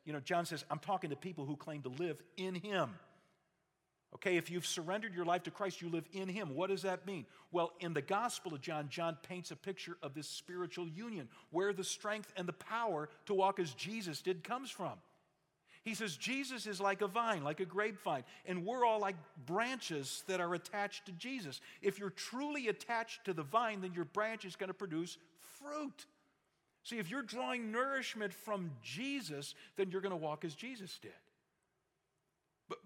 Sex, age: male, 50-69